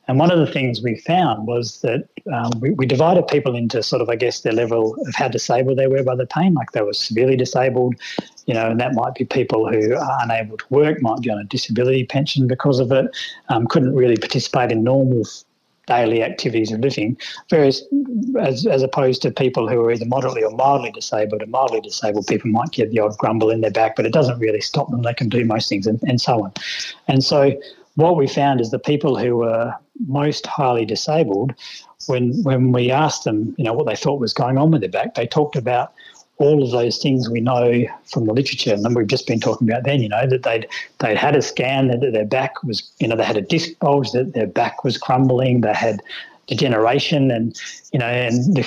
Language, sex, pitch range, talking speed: English, male, 115-140 Hz, 230 wpm